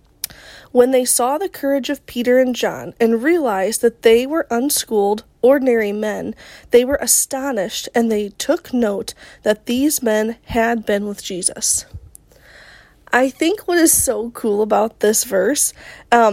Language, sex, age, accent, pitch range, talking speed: English, female, 20-39, American, 225-280 Hz, 150 wpm